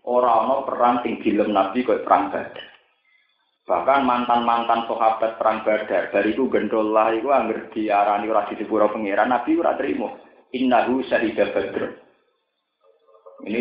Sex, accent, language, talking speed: male, native, Indonesian, 130 wpm